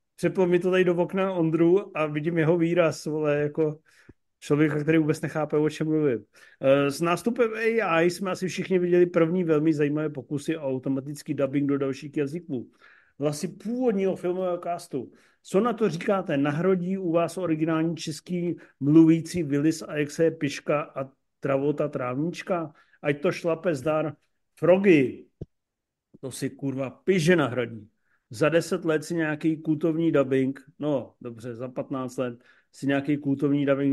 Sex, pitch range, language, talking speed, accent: male, 140-165 Hz, Czech, 150 wpm, native